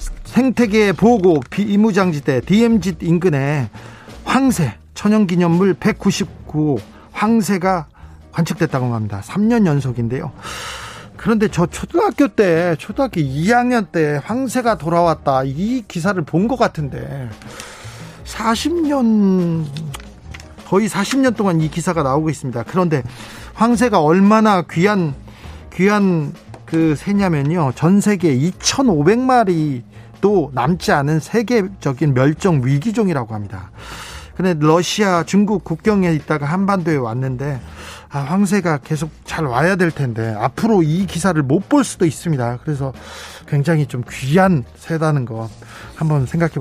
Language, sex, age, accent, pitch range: Korean, male, 40-59, native, 140-200 Hz